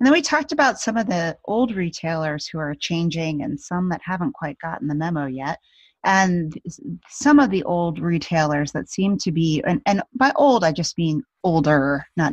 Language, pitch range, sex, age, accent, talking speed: English, 150-190 Hz, female, 30-49, American, 200 wpm